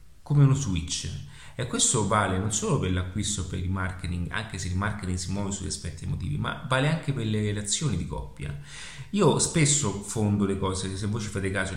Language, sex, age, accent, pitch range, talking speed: Italian, male, 30-49, native, 90-115 Hz, 205 wpm